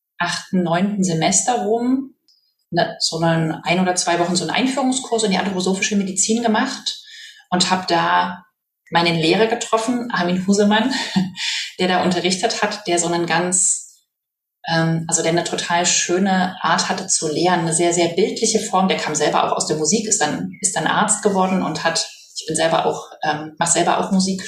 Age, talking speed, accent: 30-49, 180 wpm, German